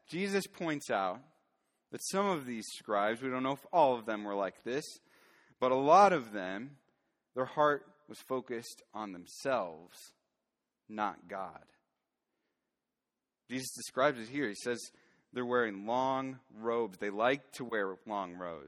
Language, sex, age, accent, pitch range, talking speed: English, male, 30-49, American, 110-140 Hz, 150 wpm